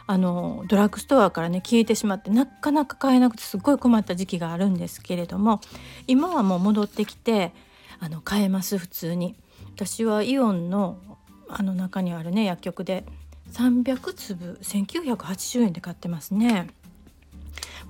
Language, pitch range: Japanese, 180-230 Hz